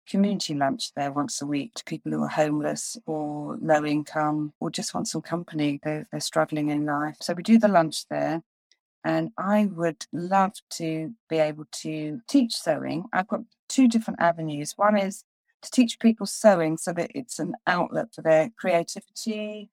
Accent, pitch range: British, 160-205 Hz